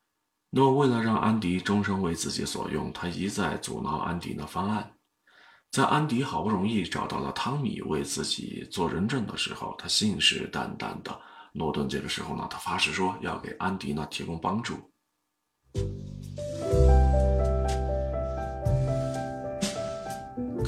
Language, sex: Chinese, male